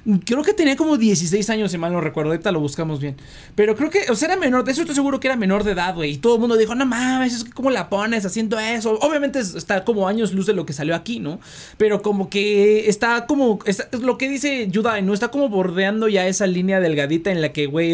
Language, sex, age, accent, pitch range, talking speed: Spanish, male, 30-49, Mexican, 165-235 Hz, 260 wpm